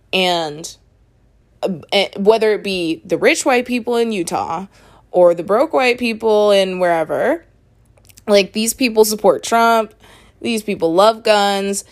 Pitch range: 160-215 Hz